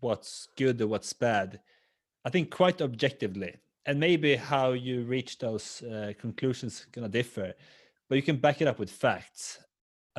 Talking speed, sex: 175 wpm, male